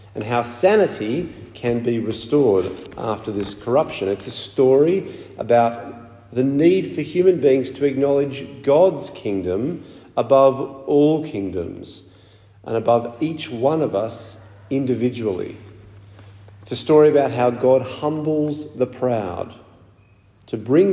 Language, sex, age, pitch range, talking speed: English, male, 50-69, 105-135 Hz, 125 wpm